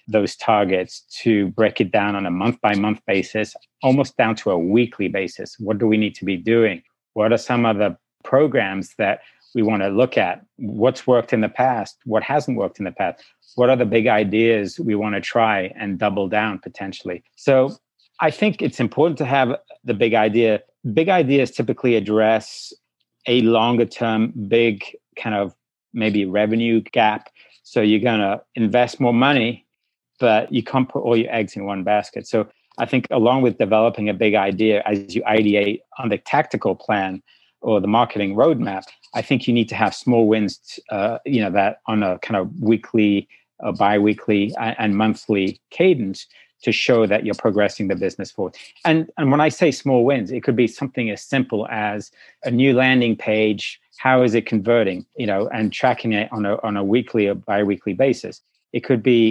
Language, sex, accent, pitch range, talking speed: English, male, American, 105-120 Hz, 190 wpm